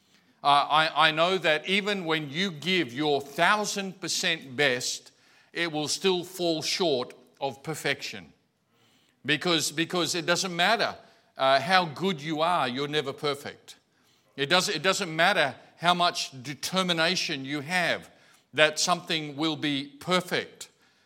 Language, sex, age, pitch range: English, male, 50-69, 135-175 Hz